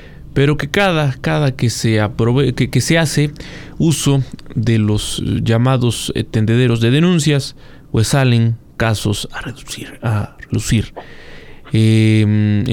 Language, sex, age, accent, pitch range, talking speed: Spanish, male, 30-49, Mexican, 110-150 Hz, 125 wpm